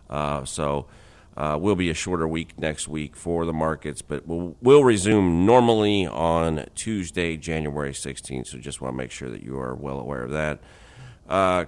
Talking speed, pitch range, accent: 185 wpm, 75-95 Hz, American